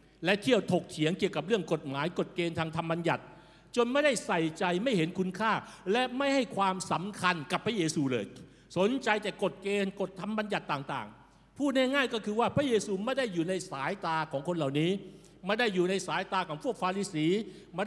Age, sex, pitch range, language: 60-79, male, 170-215 Hz, Thai